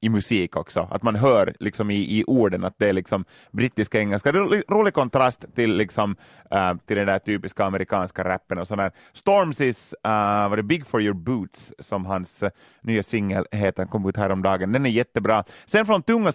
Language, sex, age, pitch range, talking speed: Swedish, male, 30-49, 105-145 Hz, 205 wpm